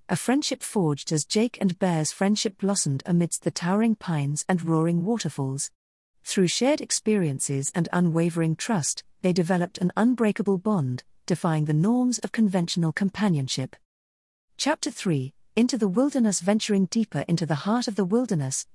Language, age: English, 40-59